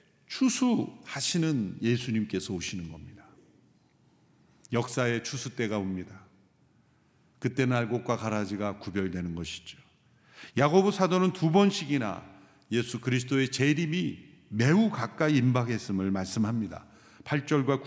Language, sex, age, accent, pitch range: Korean, male, 50-69, native, 110-160 Hz